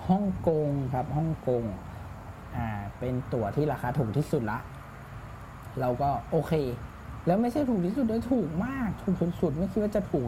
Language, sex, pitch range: Thai, male, 115-155 Hz